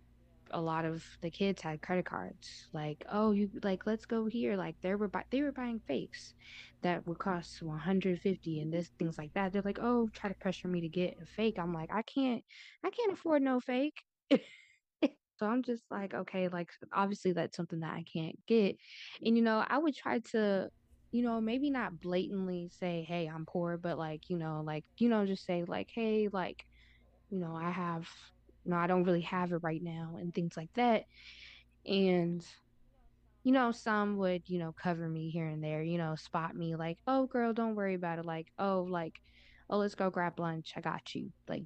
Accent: American